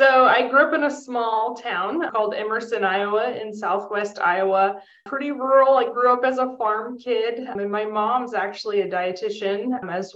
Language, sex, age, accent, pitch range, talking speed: English, female, 20-39, American, 200-235 Hz, 175 wpm